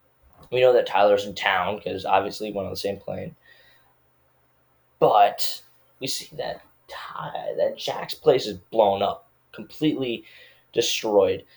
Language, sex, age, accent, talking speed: English, male, 10-29, American, 140 wpm